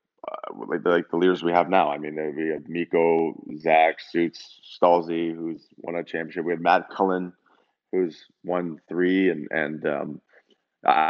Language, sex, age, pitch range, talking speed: English, male, 20-39, 85-100 Hz, 170 wpm